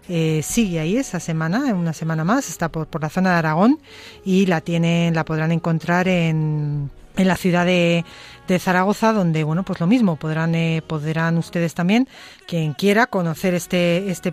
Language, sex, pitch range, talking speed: Spanish, female, 165-205 Hz, 180 wpm